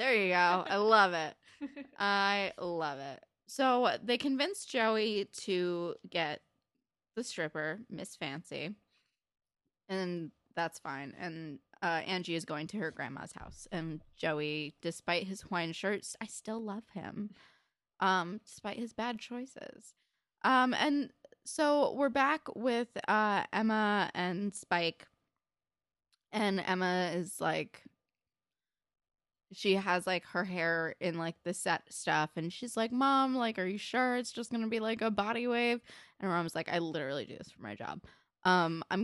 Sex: female